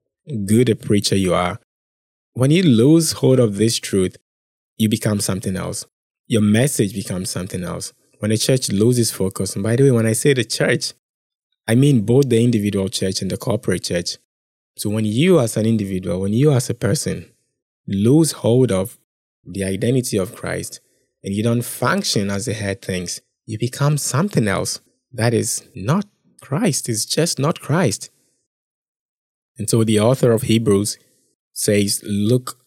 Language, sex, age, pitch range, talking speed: English, male, 20-39, 100-130 Hz, 165 wpm